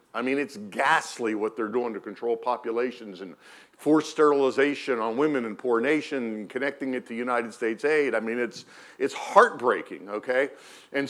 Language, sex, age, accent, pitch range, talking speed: English, male, 50-69, American, 130-215 Hz, 175 wpm